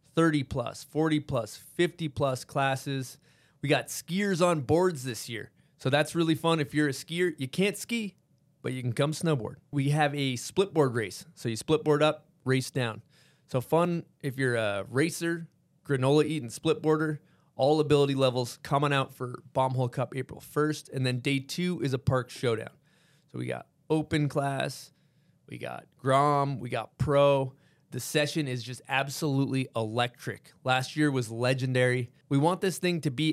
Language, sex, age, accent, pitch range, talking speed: English, male, 20-39, American, 130-155 Hz, 165 wpm